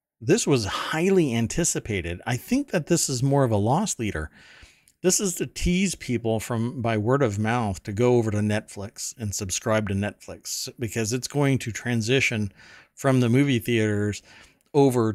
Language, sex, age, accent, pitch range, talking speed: English, male, 40-59, American, 100-120 Hz, 170 wpm